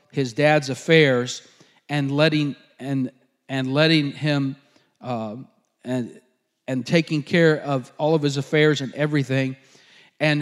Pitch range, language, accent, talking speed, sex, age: 135-165 Hz, English, American, 125 wpm, male, 40-59